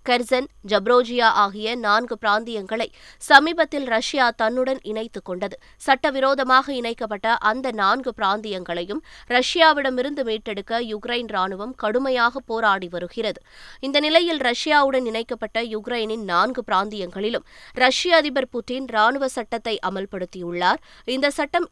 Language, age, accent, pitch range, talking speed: Tamil, 20-39, native, 210-260 Hz, 100 wpm